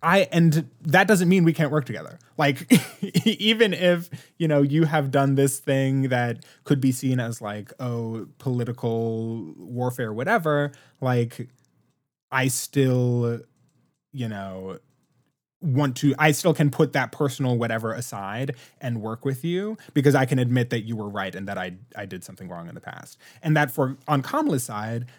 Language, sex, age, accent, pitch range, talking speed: English, male, 20-39, American, 115-150 Hz, 170 wpm